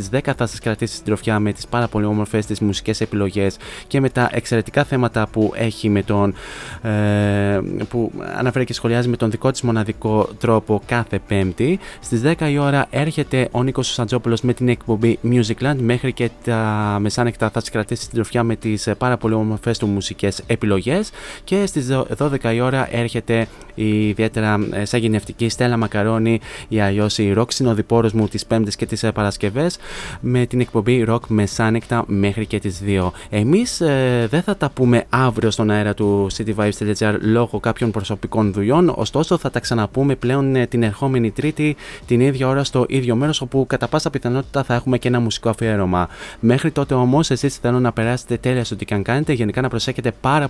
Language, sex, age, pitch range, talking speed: Greek, male, 20-39, 105-130 Hz, 180 wpm